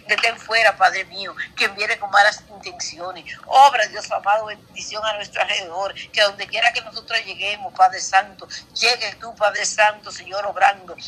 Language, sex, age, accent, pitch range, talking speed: Spanish, female, 50-69, American, 190-230 Hz, 170 wpm